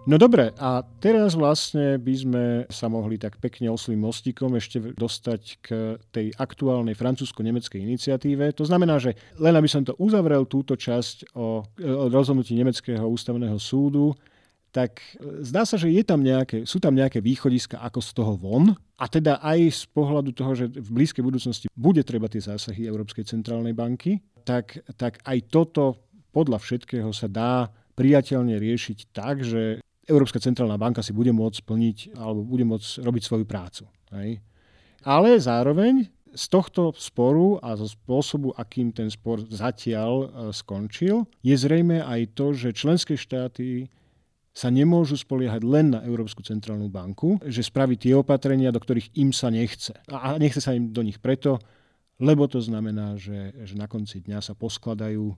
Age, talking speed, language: 40-59, 160 wpm, Slovak